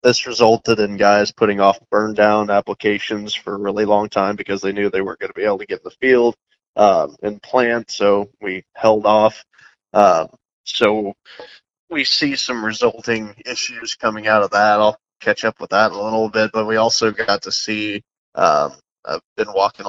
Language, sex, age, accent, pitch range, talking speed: English, male, 20-39, American, 100-115 Hz, 195 wpm